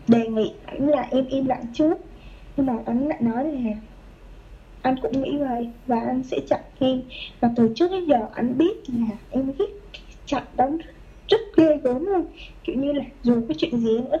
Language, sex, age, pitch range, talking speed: Vietnamese, female, 20-39, 235-285 Hz, 200 wpm